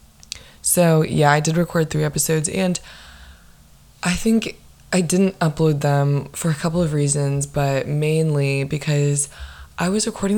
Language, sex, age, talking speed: English, female, 20-39, 145 wpm